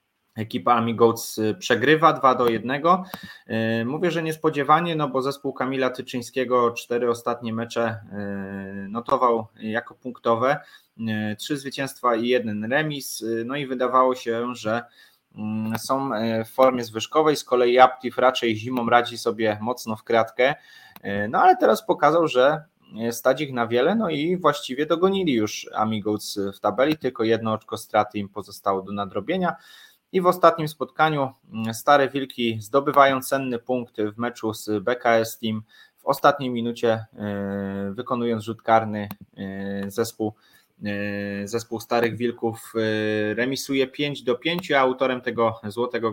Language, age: Polish, 20-39